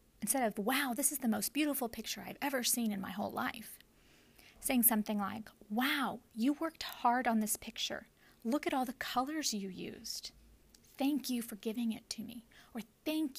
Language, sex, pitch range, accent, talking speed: English, female, 205-245 Hz, American, 190 wpm